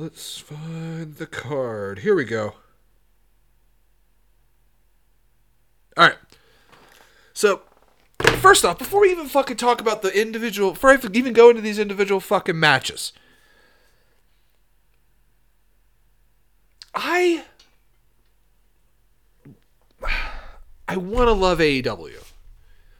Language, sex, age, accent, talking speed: English, male, 40-59, American, 90 wpm